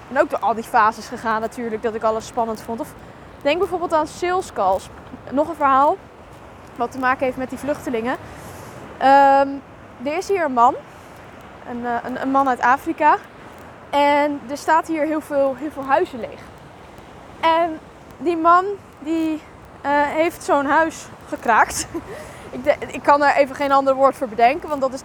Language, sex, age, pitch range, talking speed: Dutch, female, 10-29, 260-320 Hz, 175 wpm